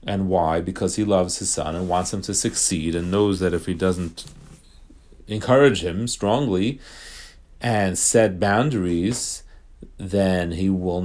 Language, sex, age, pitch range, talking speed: English, male, 40-59, 85-105 Hz, 145 wpm